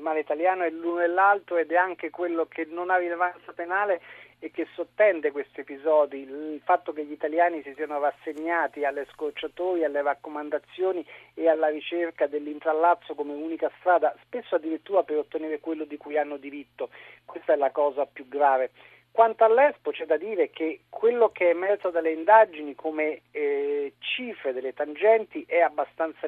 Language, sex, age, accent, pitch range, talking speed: Italian, male, 40-59, native, 150-185 Hz, 170 wpm